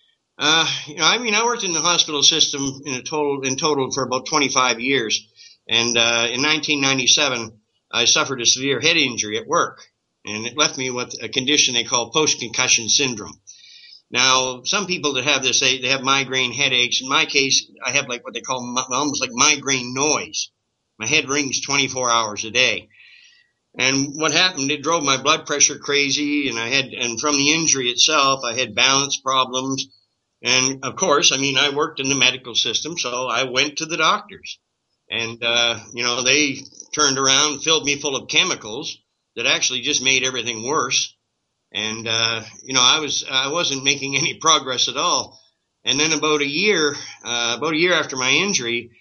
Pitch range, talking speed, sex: 125-150 Hz, 190 wpm, male